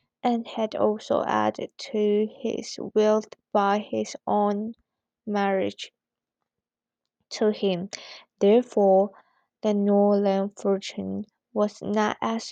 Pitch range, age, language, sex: 190-215 Hz, 20-39, Chinese, female